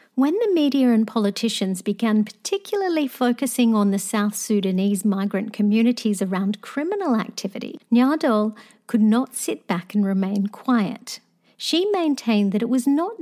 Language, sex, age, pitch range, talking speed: English, female, 50-69, 205-265 Hz, 140 wpm